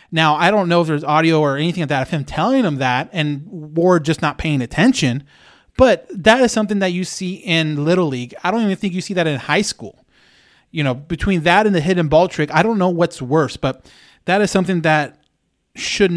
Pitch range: 150-190 Hz